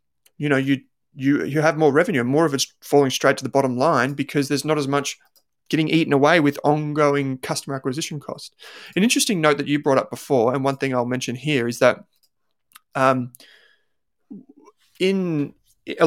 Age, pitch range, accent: 20-39, 130-150 Hz, Australian